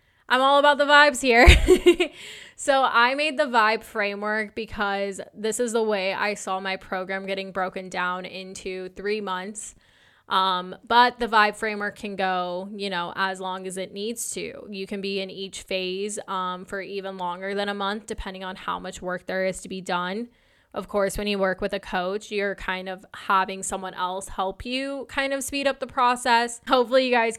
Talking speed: 195 wpm